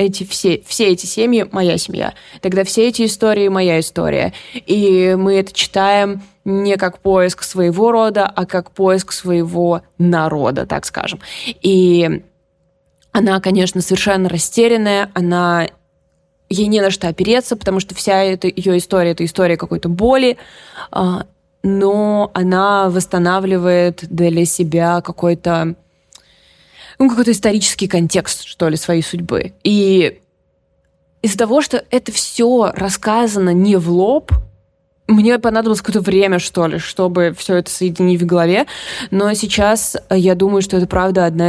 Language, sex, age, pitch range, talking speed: Russian, female, 20-39, 175-200 Hz, 140 wpm